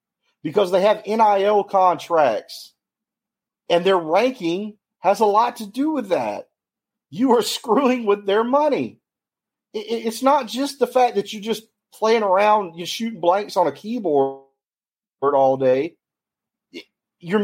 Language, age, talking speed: English, 40-59, 140 wpm